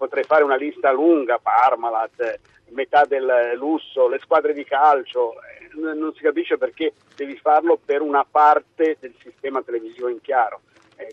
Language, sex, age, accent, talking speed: Italian, male, 50-69, native, 150 wpm